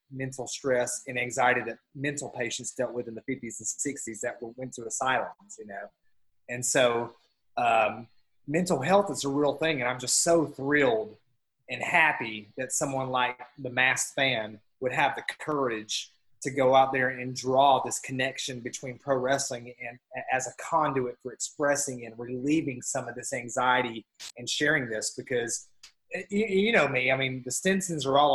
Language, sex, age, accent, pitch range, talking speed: English, male, 30-49, American, 125-145 Hz, 175 wpm